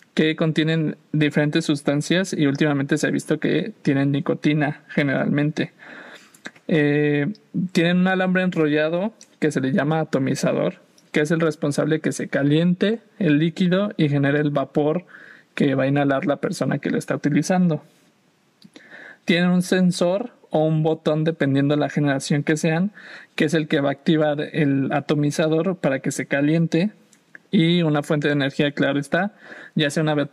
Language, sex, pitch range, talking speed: Spanish, male, 145-170 Hz, 160 wpm